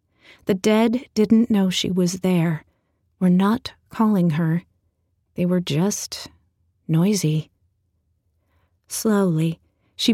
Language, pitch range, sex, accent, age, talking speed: English, 150-200 Hz, female, American, 30-49, 100 wpm